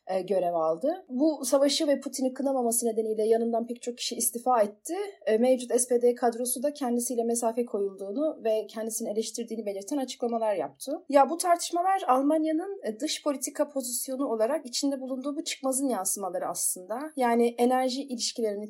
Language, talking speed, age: Turkish, 140 wpm, 30-49